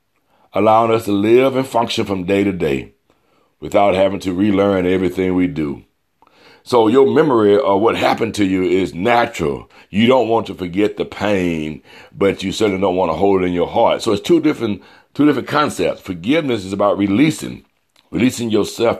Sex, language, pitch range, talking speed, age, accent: male, English, 90-115 Hz, 185 wpm, 60-79, American